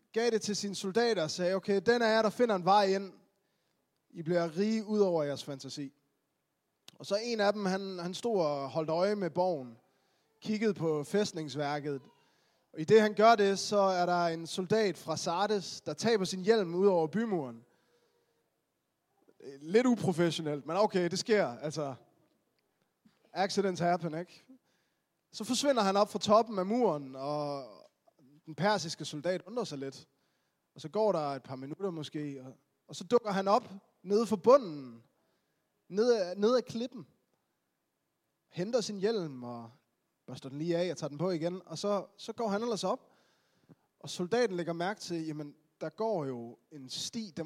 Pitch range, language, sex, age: 155-210 Hz, Danish, male, 20-39